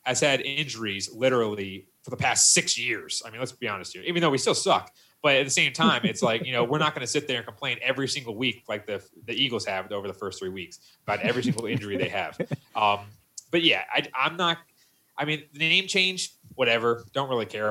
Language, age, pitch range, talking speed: English, 30-49, 100-130 Hz, 245 wpm